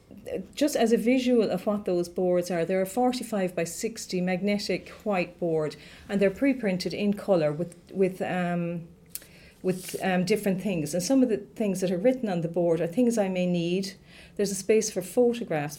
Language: English